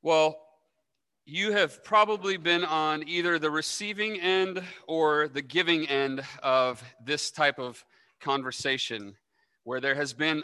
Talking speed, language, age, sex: 130 wpm, English, 30-49, male